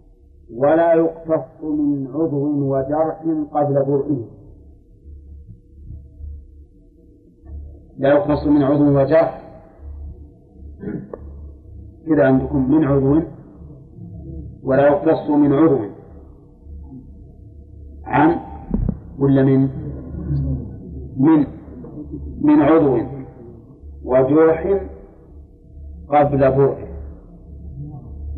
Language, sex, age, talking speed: Arabic, male, 50-69, 60 wpm